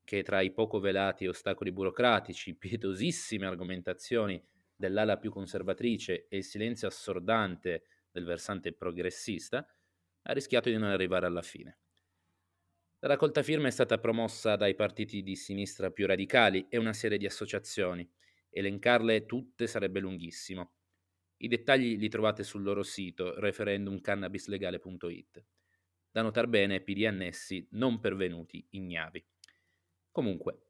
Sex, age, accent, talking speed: male, 30-49, native, 125 wpm